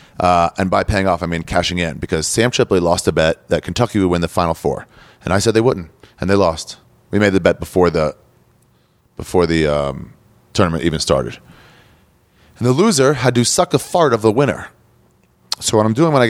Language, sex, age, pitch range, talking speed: English, male, 30-49, 90-130 Hz, 215 wpm